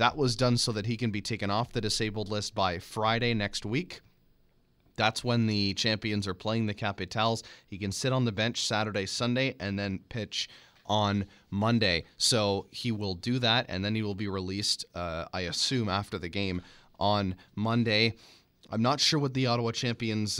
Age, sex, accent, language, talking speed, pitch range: 30-49, male, American, English, 190 wpm, 95-115 Hz